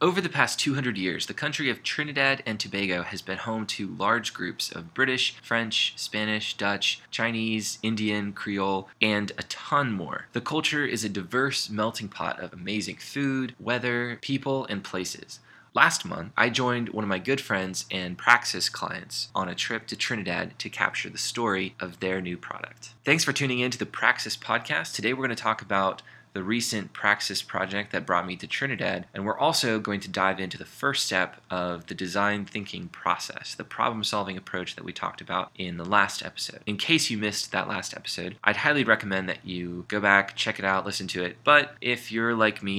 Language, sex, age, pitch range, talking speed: English, male, 20-39, 95-120 Hz, 200 wpm